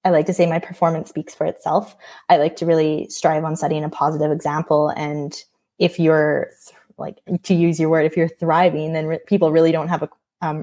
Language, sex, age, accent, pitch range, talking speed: English, female, 10-29, American, 160-190 Hz, 215 wpm